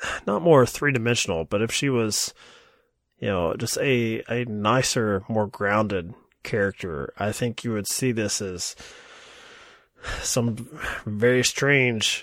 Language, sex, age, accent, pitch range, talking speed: English, male, 20-39, American, 110-145 Hz, 130 wpm